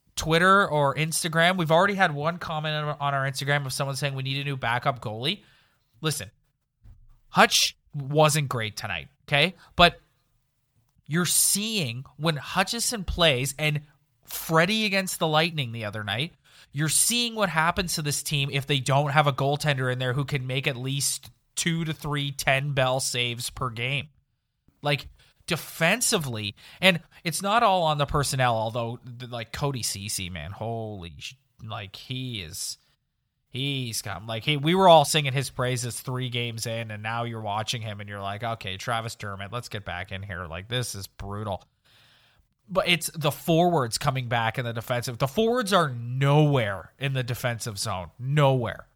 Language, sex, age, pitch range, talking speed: English, male, 20-39, 115-155 Hz, 170 wpm